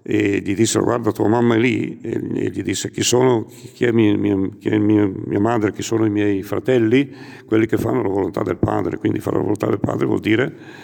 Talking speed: 230 wpm